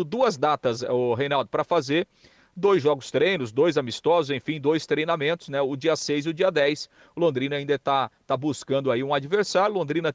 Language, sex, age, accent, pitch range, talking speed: Portuguese, male, 40-59, Brazilian, 130-155 Hz, 185 wpm